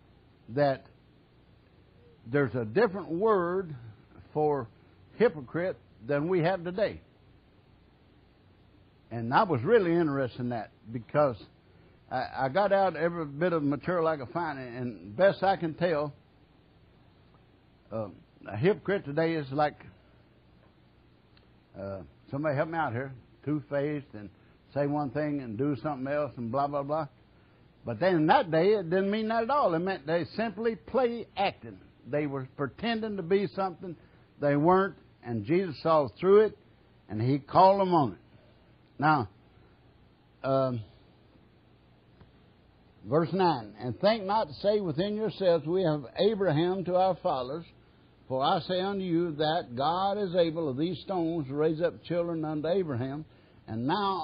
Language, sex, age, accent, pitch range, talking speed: English, male, 60-79, American, 130-185 Hz, 145 wpm